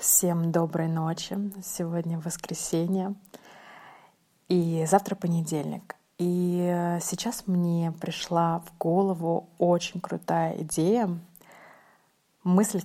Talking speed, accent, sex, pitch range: 85 wpm, native, female, 165-190 Hz